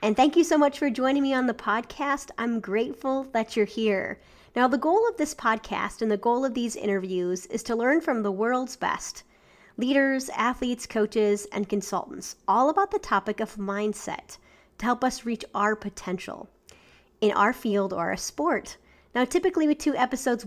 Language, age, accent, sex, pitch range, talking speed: English, 30-49, American, female, 200-245 Hz, 185 wpm